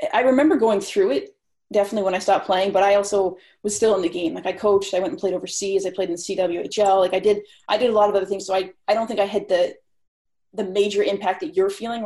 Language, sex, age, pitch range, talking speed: English, female, 30-49, 185-220 Hz, 270 wpm